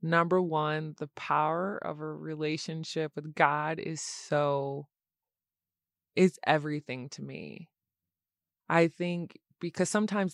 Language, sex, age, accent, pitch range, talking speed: English, female, 20-39, American, 145-170 Hz, 110 wpm